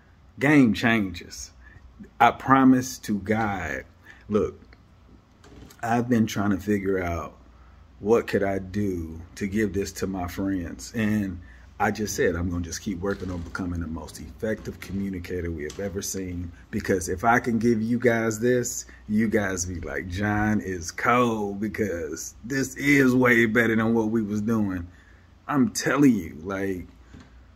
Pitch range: 90-110 Hz